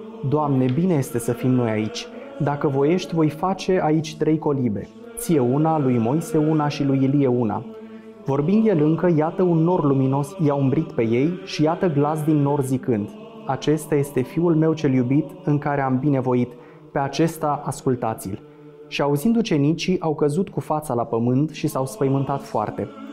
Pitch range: 130-165 Hz